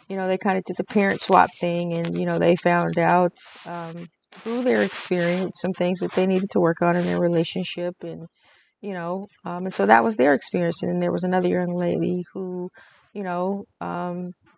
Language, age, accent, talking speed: English, 30-49, American, 210 wpm